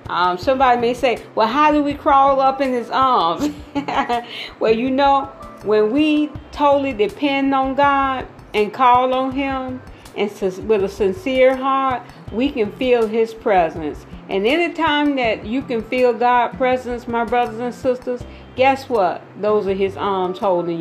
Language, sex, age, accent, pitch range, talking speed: English, female, 40-59, American, 205-280 Hz, 160 wpm